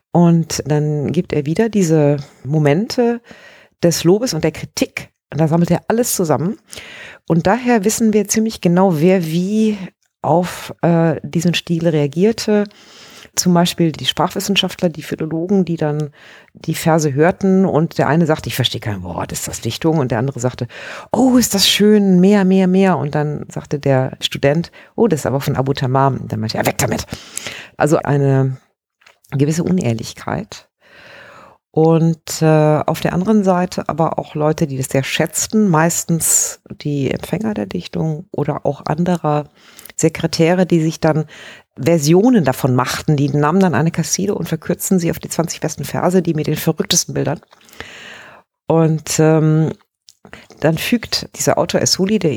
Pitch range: 150-185 Hz